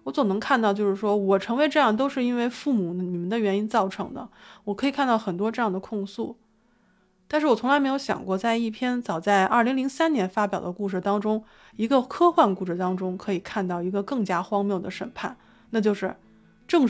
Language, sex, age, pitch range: Chinese, female, 20-39, 195-240 Hz